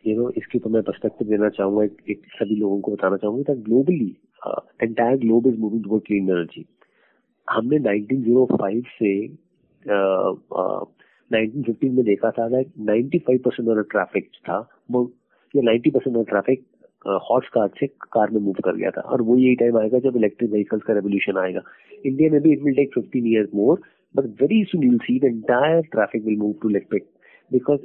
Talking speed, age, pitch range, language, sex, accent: 80 wpm, 30-49, 105-130 Hz, Hindi, male, native